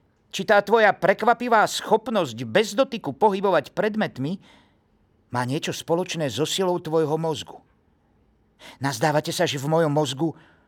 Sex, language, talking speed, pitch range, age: male, Slovak, 125 wpm, 125-170 Hz, 50-69